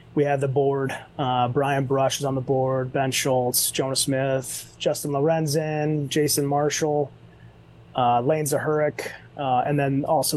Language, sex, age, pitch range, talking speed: English, male, 30-49, 135-175 Hz, 150 wpm